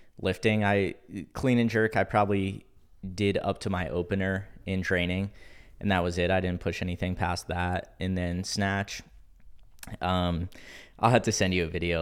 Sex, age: male, 10-29